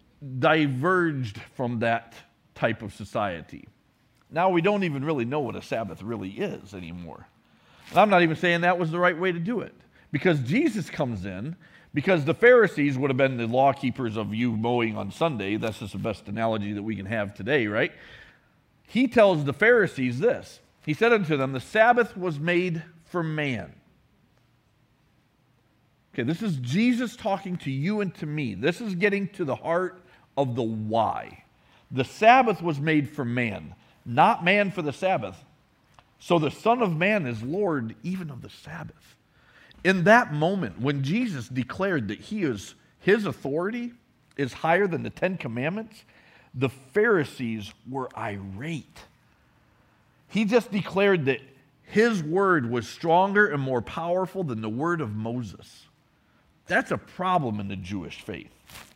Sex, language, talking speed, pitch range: male, English, 160 wpm, 120-185 Hz